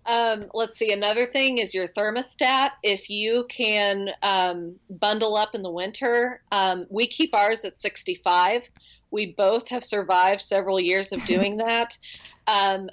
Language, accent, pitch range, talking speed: English, American, 185-220 Hz, 155 wpm